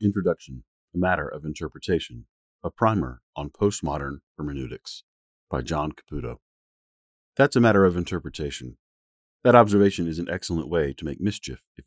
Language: English